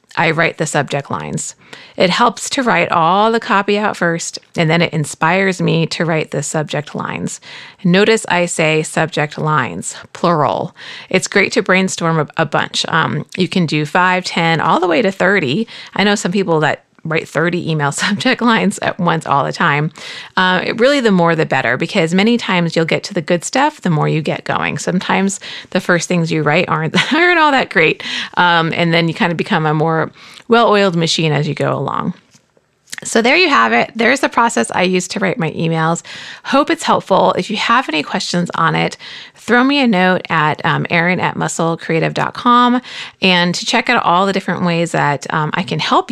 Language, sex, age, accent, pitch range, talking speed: English, female, 30-49, American, 165-205 Hz, 200 wpm